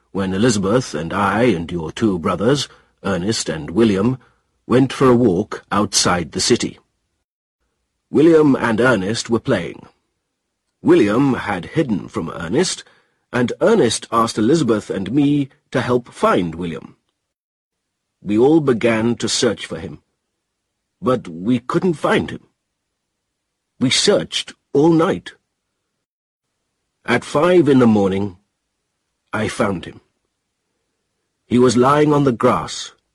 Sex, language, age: male, Chinese, 50-69